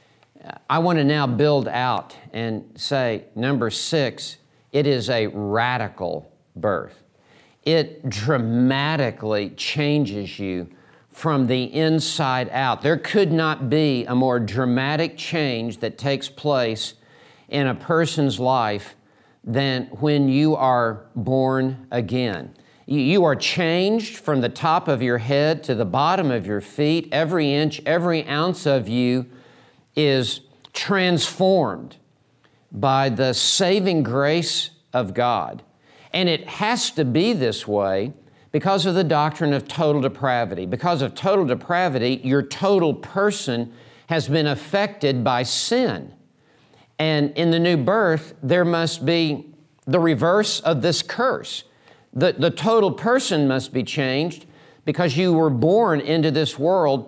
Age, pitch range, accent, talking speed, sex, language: 50-69, 125-160 Hz, American, 130 wpm, male, English